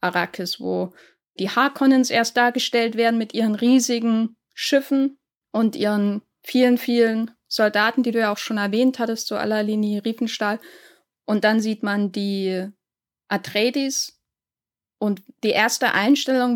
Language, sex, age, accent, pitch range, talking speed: German, female, 10-29, German, 205-245 Hz, 140 wpm